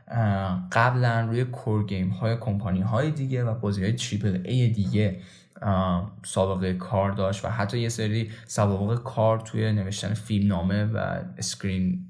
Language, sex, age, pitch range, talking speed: Persian, male, 10-29, 105-135 Hz, 145 wpm